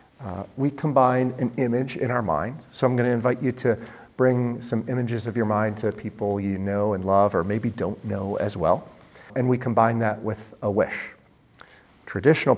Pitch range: 95-125 Hz